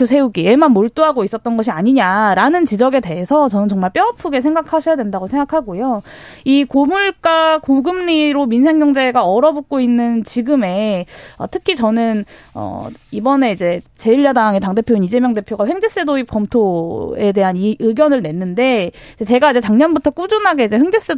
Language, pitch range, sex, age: Korean, 210-295 Hz, female, 20-39